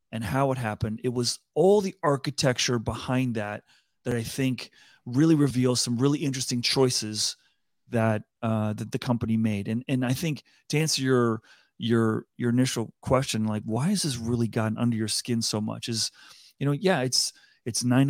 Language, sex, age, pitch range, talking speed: English, male, 30-49, 115-145 Hz, 175 wpm